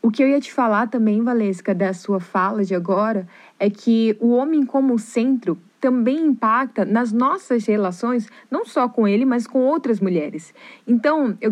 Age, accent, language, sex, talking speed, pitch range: 20-39, Brazilian, Portuguese, female, 175 wpm, 205-280 Hz